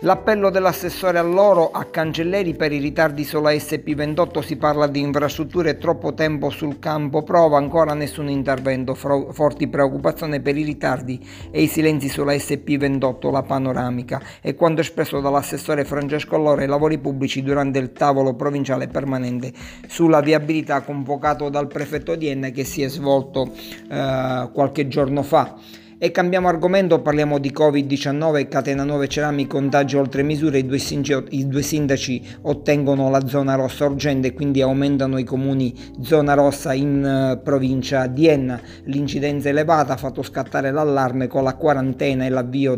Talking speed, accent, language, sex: 155 wpm, native, Italian, male